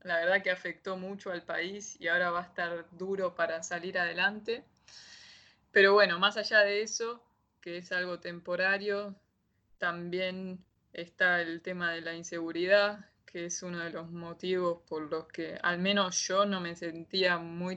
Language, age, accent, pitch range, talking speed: Italian, 20-39, Argentinian, 175-195 Hz, 165 wpm